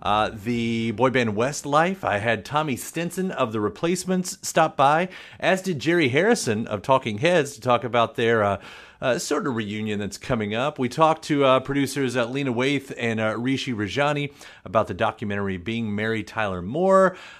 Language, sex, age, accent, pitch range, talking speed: English, male, 30-49, American, 110-155 Hz, 180 wpm